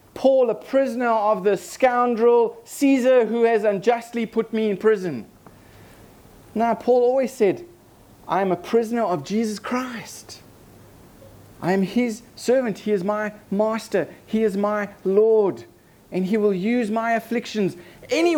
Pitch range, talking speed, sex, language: 150-220 Hz, 145 wpm, male, English